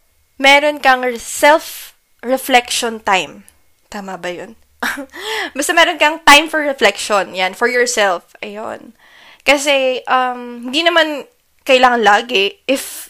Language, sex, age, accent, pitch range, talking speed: Filipino, female, 20-39, native, 210-270 Hz, 110 wpm